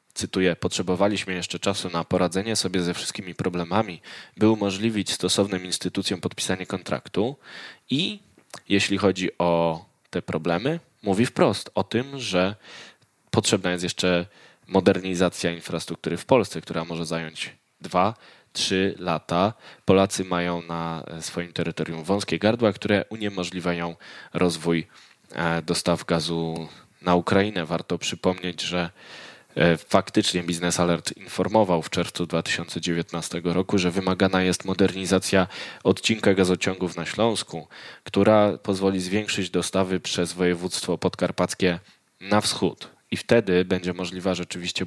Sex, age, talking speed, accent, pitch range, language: male, 10-29, 115 wpm, native, 85-95 Hz, Polish